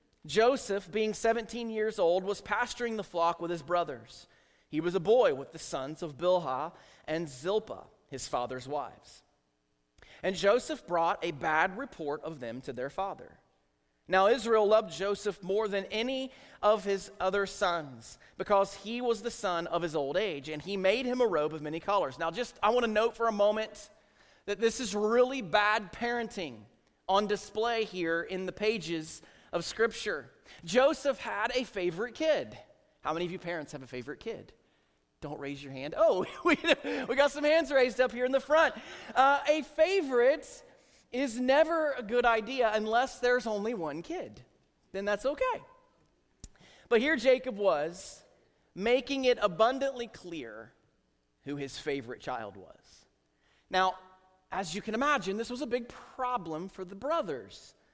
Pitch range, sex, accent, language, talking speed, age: 170-245 Hz, male, American, English, 165 wpm, 30-49